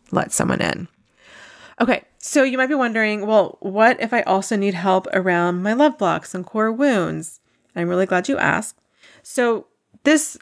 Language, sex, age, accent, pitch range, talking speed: English, female, 30-49, American, 175-210 Hz, 175 wpm